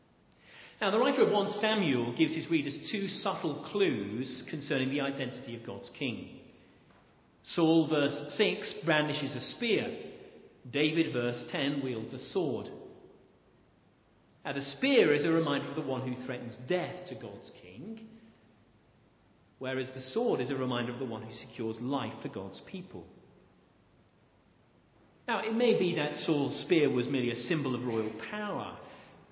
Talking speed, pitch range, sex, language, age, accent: 150 wpm, 120-180 Hz, male, English, 50-69, British